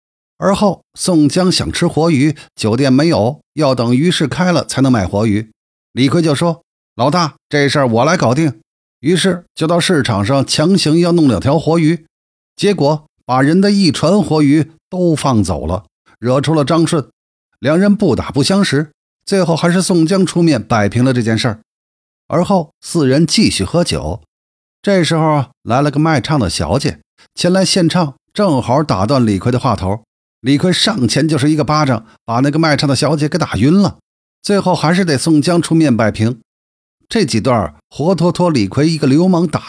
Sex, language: male, Chinese